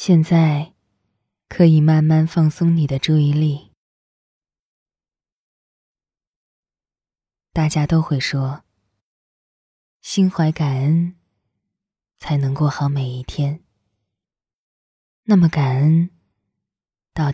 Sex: female